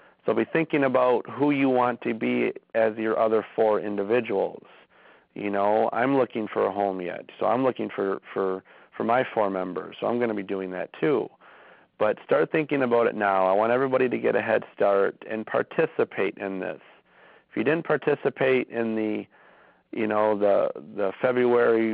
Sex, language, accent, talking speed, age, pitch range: male, English, American, 185 wpm, 40-59, 100-115 Hz